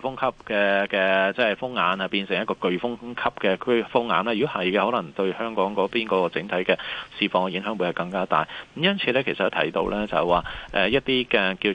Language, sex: Chinese, male